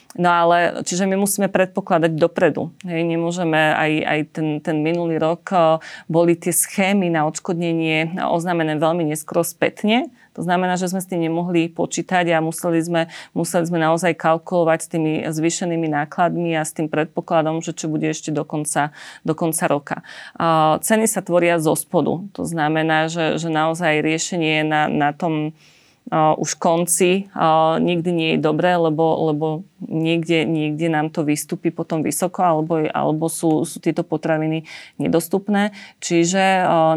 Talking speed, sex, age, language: 160 wpm, female, 30-49, Slovak